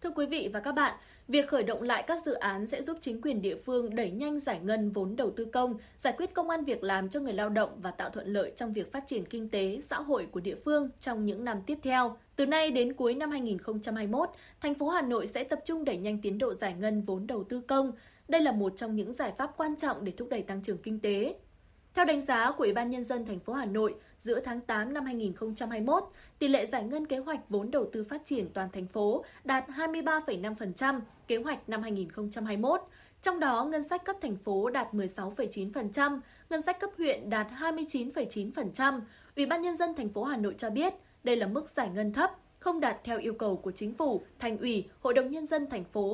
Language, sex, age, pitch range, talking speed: Vietnamese, female, 20-39, 210-290 Hz, 235 wpm